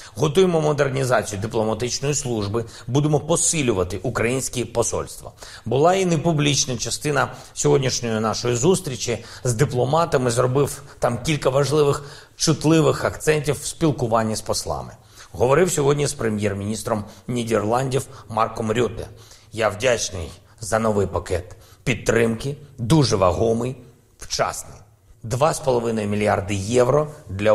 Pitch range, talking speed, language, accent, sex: 105-145 Hz, 100 wpm, Ukrainian, native, male